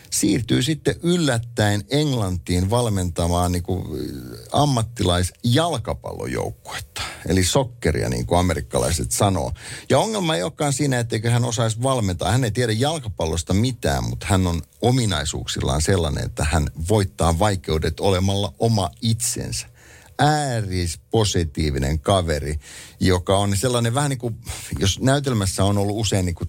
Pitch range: 85-115 Hz